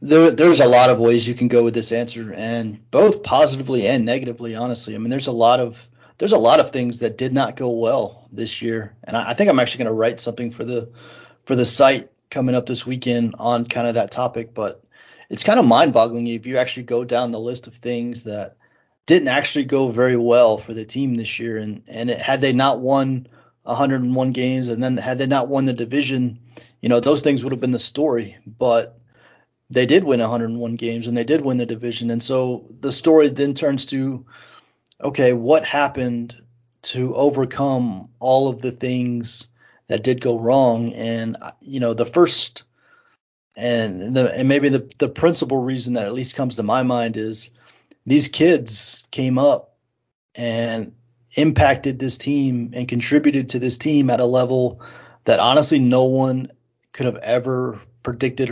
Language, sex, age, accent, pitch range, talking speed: English, male, 30-49, American, 120-135 Hz, 190 wpm